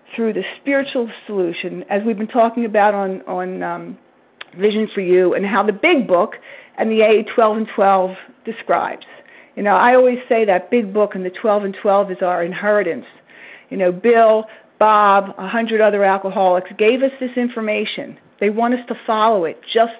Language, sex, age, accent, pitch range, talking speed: English, female, 40-59, American, 200-265 Hz, 185 wpm